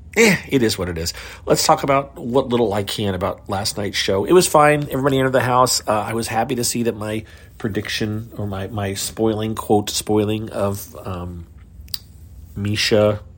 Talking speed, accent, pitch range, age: 190 wpm, American, 90-115 Hz, 40-59